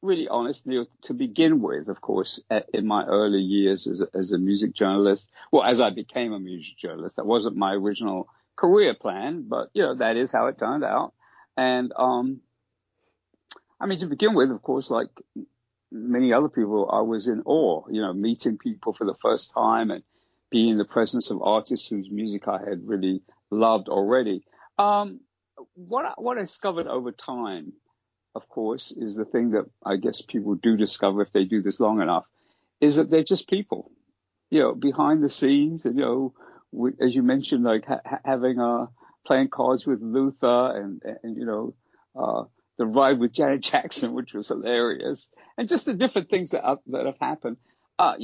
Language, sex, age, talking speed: English, male, 50-69, 185 wpm